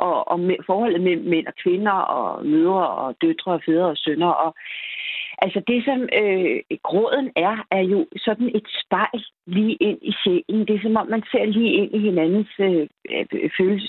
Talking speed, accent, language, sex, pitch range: 190 wpm, native, Danish, female, 175-220 Hz